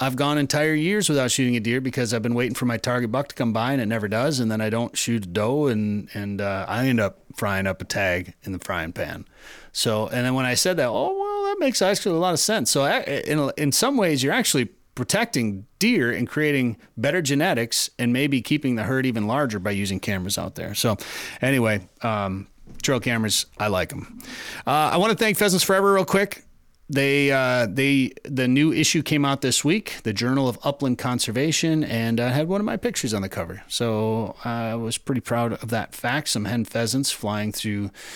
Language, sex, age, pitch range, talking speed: English, male, 30-49, 105-140 Hz, 220 wpm